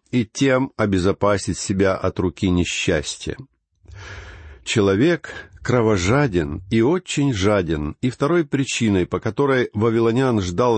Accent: native